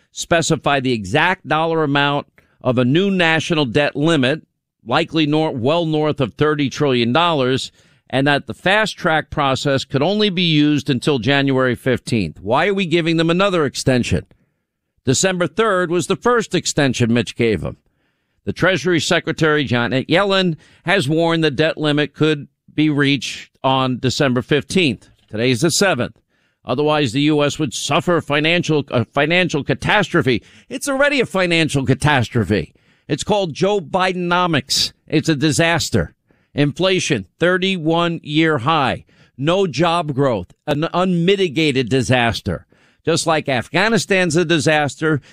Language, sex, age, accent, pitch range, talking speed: English, male, 50-69, American, 130-170 Hz, 135 wpm